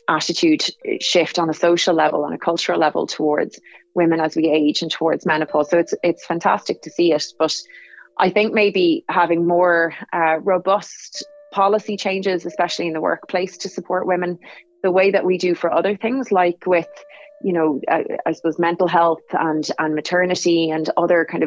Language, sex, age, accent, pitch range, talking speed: English, female, 30-49, Irish, 160-185 Hz, 180 wpm